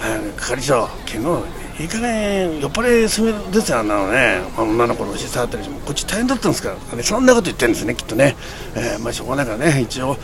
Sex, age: male, 60-79